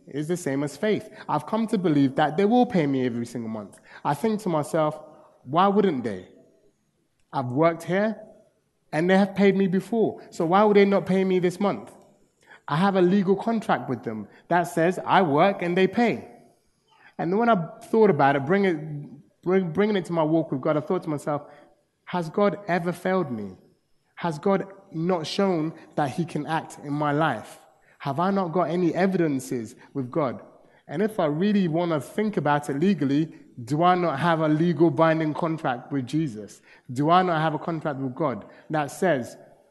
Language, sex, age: English, male, 30-49